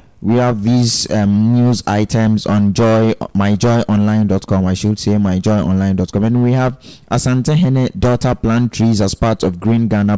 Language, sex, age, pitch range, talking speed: English, male, 20-39, 95-110 Hz, 145 wpm